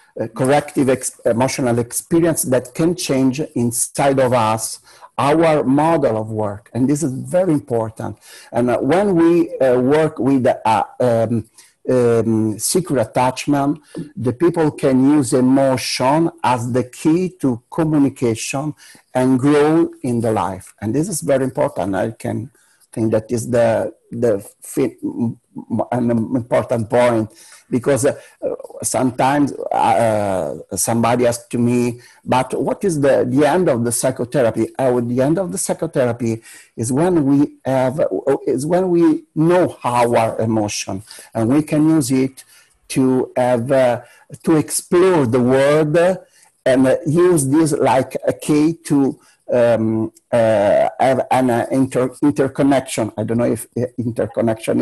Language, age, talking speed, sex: English, 60-79, 140 wpm, male